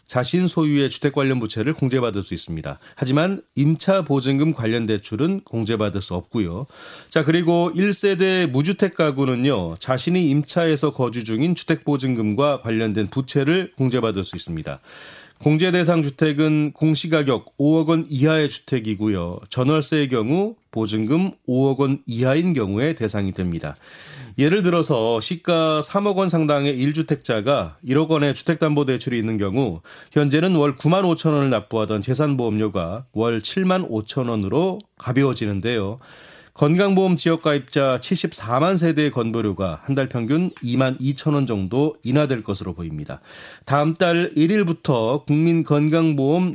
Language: Korean